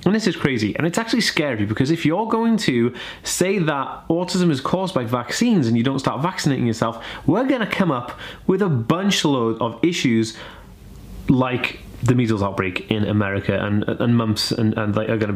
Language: English